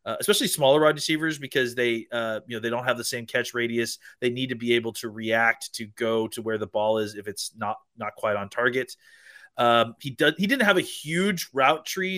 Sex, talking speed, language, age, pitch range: male, 235 wpm, English, 30-49, 115-145 Hz